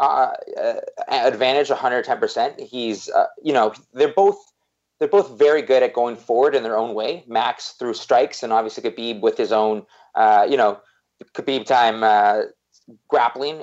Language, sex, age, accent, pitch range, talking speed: English, male, 20-39, American, 110-180 Hz, 175 wpm